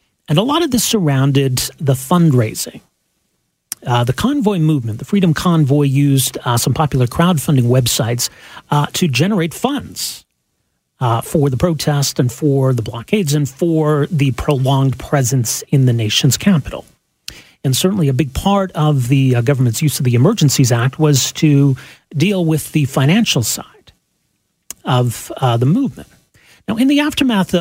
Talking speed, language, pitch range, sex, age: 155 wpm, English, 130-165 Hz, male, 40-59